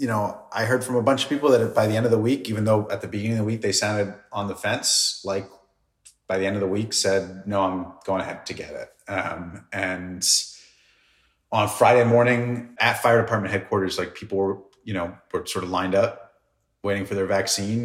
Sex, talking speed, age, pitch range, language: male, 225 wpm, 30-49, 95-115 Hz, English